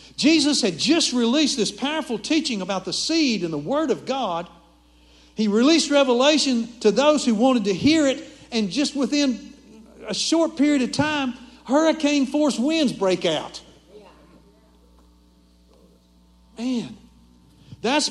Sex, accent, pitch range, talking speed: male, American, 180-270 Hz, 130 wpm